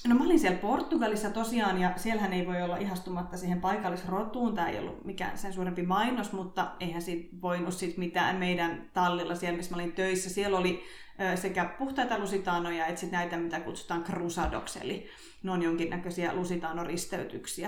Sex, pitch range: female, 180-220 Hz